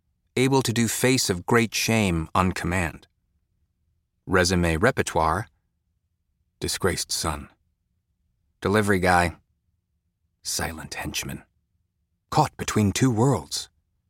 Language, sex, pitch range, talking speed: English, male, 80-95 Hz, 90 wpm